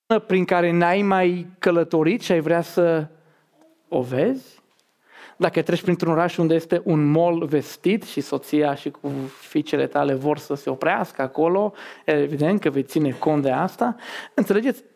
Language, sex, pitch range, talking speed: Romanian, male, 165-225 Hz, 150 wpm